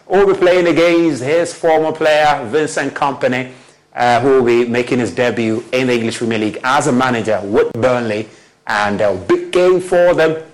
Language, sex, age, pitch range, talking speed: English, male, 30-49, 115-155 Hz, 175 wpm